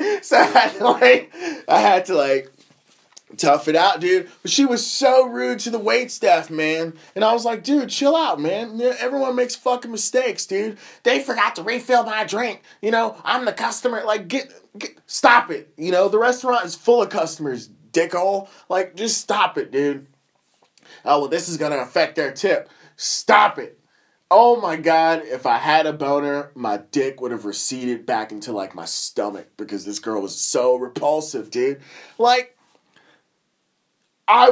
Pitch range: 150-245 Hz